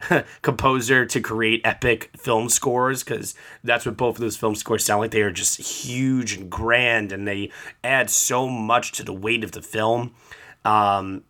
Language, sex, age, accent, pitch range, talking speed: English, male, 20-39, American, 105-125 Hz, 180 wpm